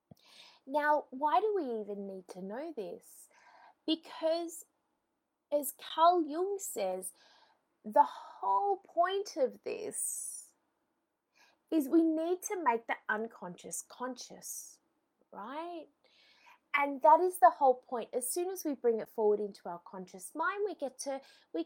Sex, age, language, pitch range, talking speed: female, 20-39, English, 225-345 Hz, 125 wpm